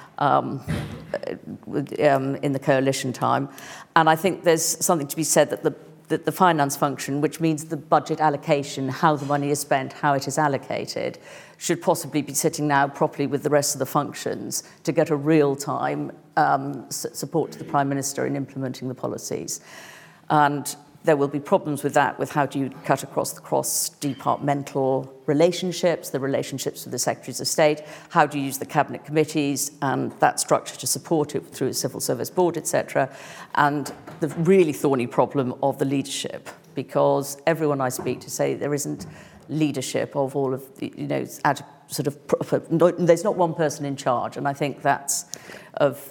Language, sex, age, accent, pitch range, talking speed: English, female, 50-69, British, 140-155 Hz, 180 wpm